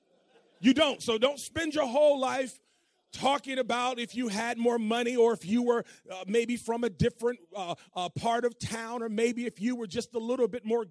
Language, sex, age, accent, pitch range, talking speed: English, male, 40-59, American, 155-245 Hz, 215 wpm